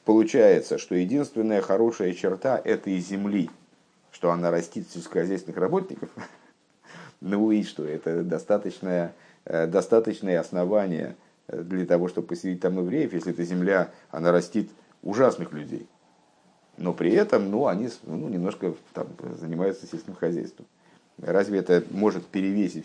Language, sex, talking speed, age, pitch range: Russian, male, 125 wpm, 50-69, 85-105 Hz